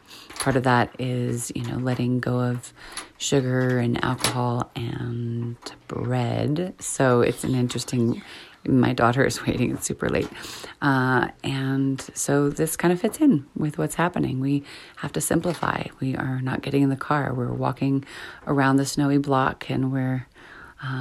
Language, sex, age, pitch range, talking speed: English, female, 30-49, 125-140 Hz, 160 wpm